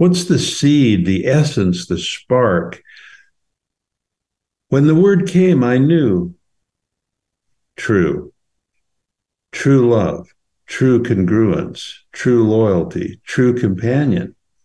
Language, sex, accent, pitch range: English, male, American, 95-135 Hz